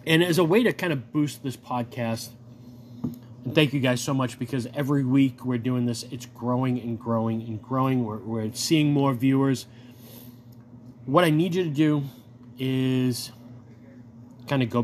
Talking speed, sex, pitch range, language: 175 wpm, male, 120-150 Hz, English